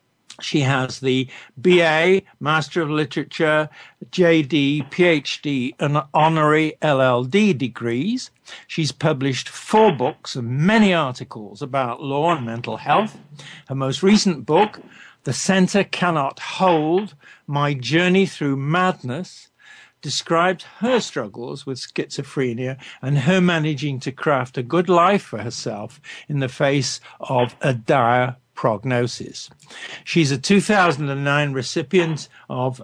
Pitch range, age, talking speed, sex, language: 130-170 Hz, 60-79, 115 wpm, male, English